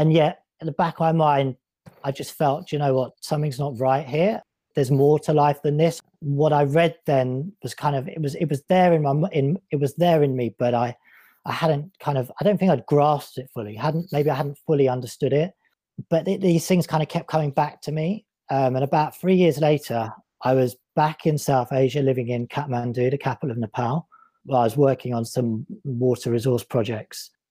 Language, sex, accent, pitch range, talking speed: English, male, British, 130-155 Hz, 225 wpm